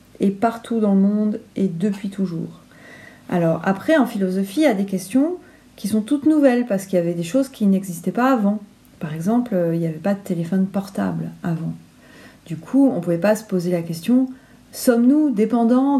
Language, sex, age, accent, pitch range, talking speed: French, female, 40-59, French, 185-245 Hz, 200 wpm